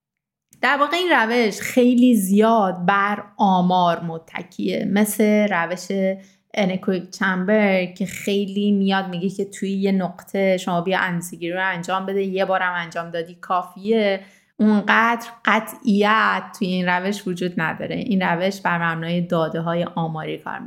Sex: female